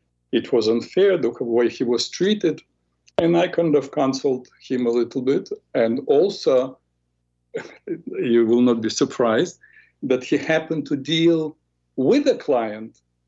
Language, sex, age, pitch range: English, male, 50-69, 110-155 Hz